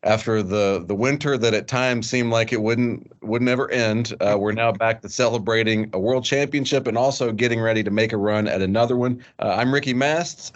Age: 40-59